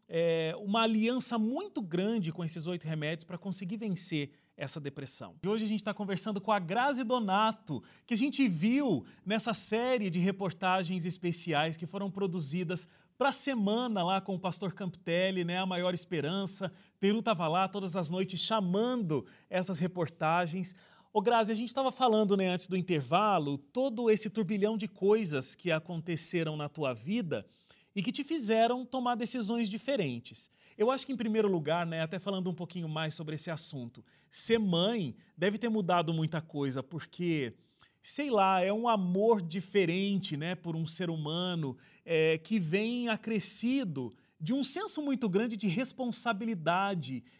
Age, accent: 30-49, Brazilian